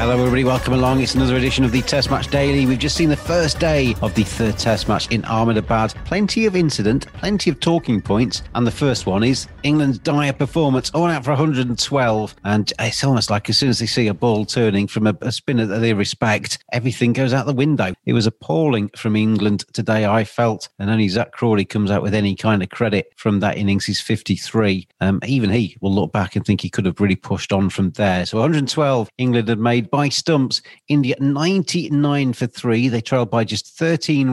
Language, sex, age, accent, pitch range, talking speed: English, male, 40-59, British, 105-135 Hz, 215 wpm